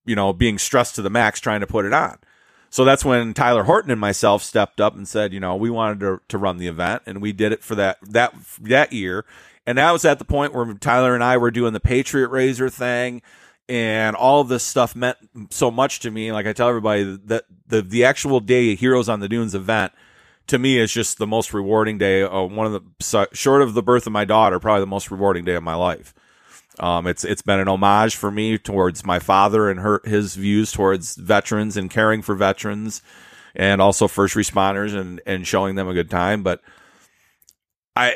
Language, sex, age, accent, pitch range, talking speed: English, male, 40-59, American, 100-120 Hz, 225 wpm